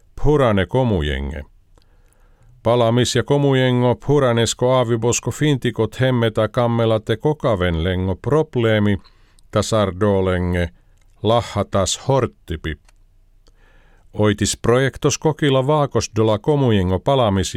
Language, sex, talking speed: Finnish, male, 70 wpm